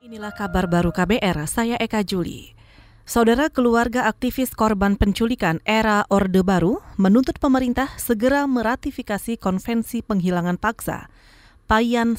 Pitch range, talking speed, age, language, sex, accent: 135-230 Hz, 115 wpm, 30-49, Indonesian, female, native